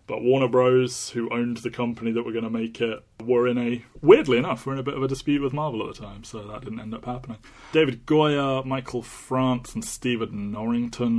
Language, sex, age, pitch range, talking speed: English, male, 20-39, 105-125 Hz, 230 wpm